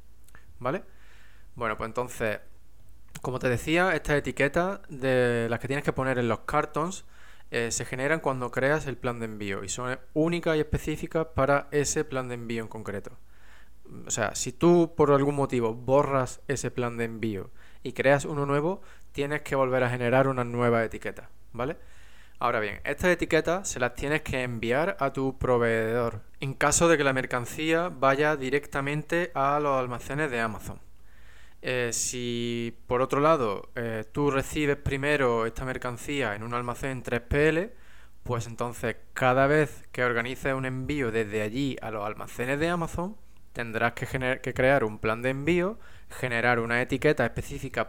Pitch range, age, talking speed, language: 115-145 Hz, 20-39, 165 wpm, Spanish